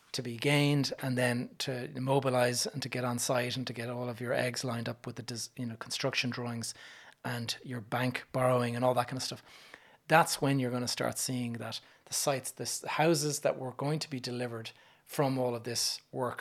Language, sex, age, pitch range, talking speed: English, male, 30-49, 120-130 Hz, 225 wpm